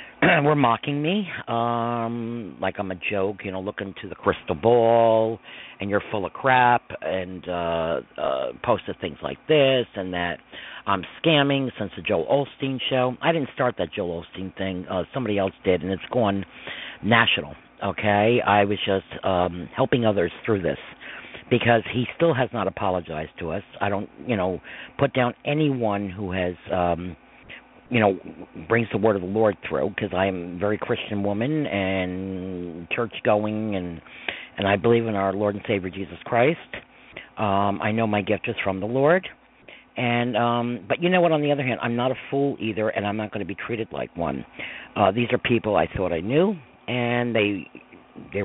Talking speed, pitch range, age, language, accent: 190 wpm, 95-120 Hz, 50-69, English, American